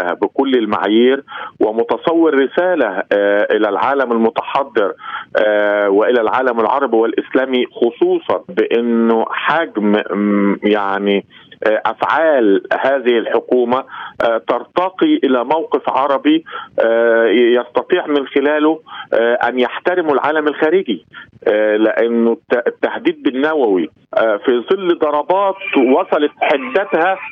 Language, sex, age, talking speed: Arabic, male, 50-69, 80 wpm